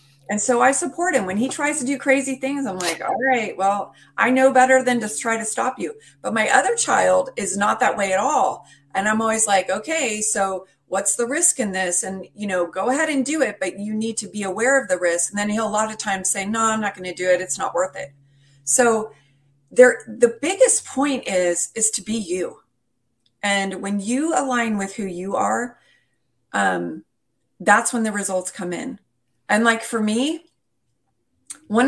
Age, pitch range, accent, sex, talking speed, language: 30-49, 190-245 Hz, American, female, 210 wpm, English